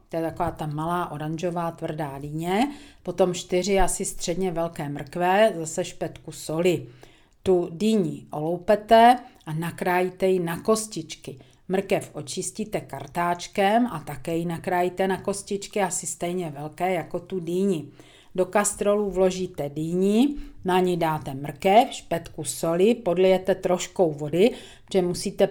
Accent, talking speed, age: native, 130 wpm, 50-69